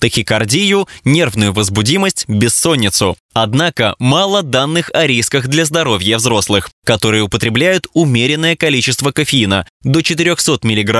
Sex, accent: male, native